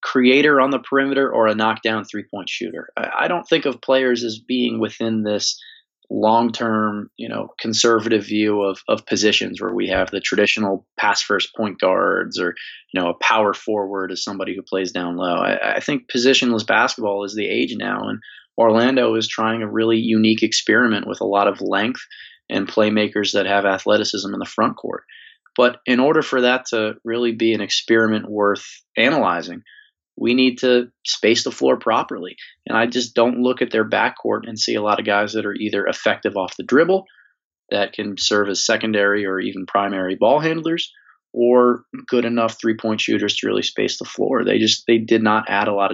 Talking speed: 190 wpm